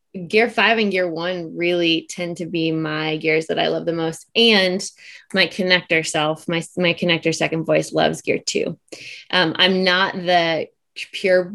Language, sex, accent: English, female, American